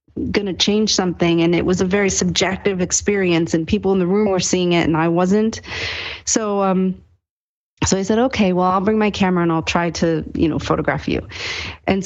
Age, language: 40-59, English